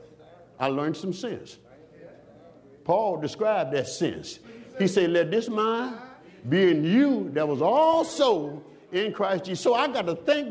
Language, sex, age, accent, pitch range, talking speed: English, male, 60-79, American, 180-265 Hz, 155 wpm